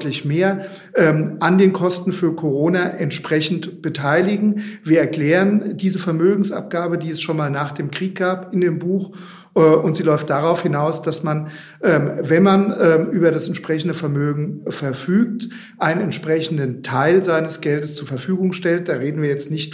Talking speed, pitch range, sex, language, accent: 155 wpm, 150-180 Hz, male, German, German